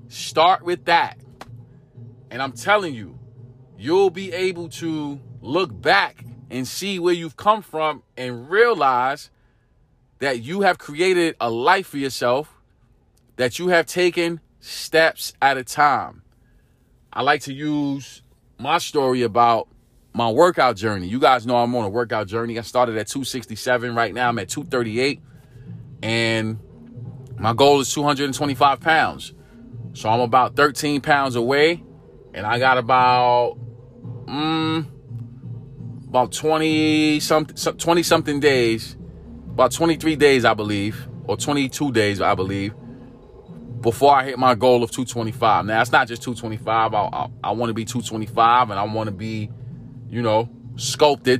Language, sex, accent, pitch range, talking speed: English, male, American, 120-145 Hz, 145 wpm